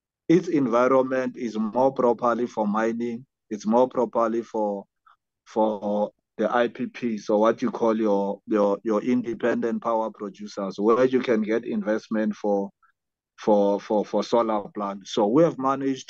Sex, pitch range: male, 110-125 Hz